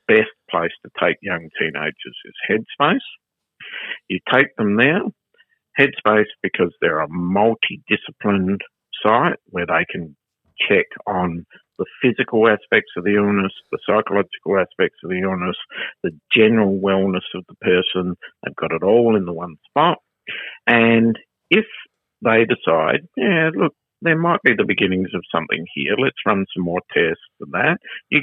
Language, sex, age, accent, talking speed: English, male, 50-69, Australian, 150 wpm